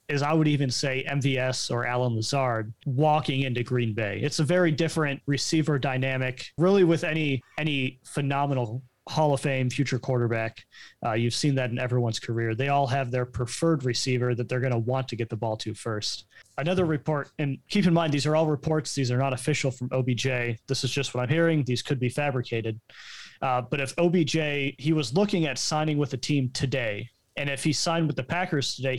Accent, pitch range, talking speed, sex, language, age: American, 125-150 Hz, 205 wpm, male, English, 30-49